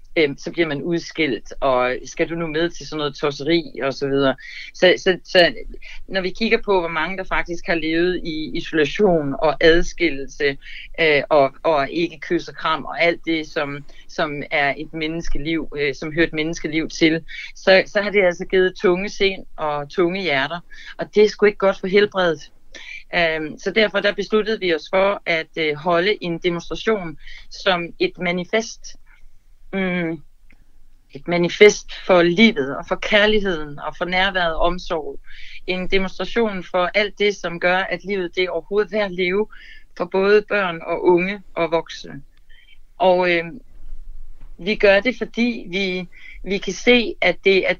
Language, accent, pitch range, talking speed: Danish, native, 165-200 Hz, 165 wpm